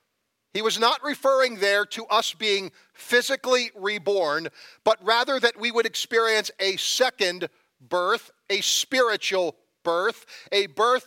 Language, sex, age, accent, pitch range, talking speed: English, male, 40-59, American, 185-240 Hz, 130 wpm